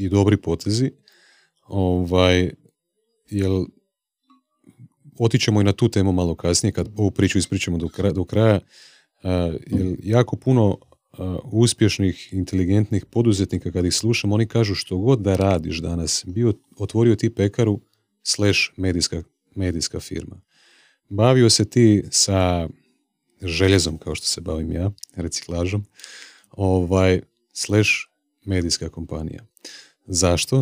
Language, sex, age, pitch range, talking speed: Croatian, male, 30-49, 90-110 Hz, 120 wpm